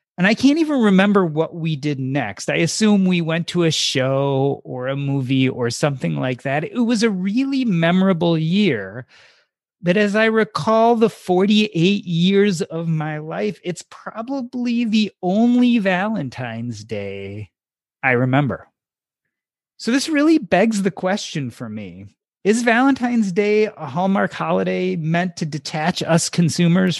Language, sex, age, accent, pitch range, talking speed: English, male, 30-49, American, 130-200 Hz, 145 wpm